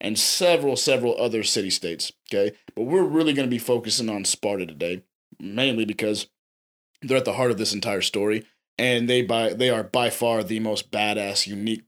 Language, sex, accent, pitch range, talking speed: English, male, American, 105-125 Hz, 185 wpm